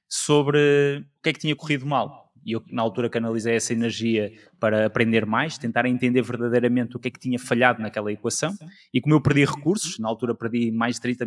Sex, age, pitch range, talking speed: male, 20-39, 115-150 Hz, 215 wpm